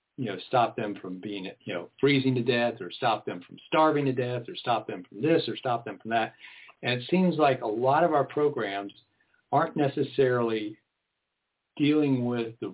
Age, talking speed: 50-69, 200 wpm